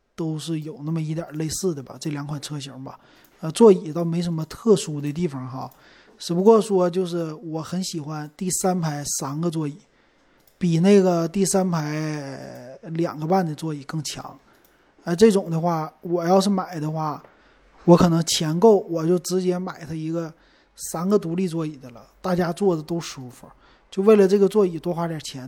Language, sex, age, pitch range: Chinese, male, 20-39, 155-215 Hz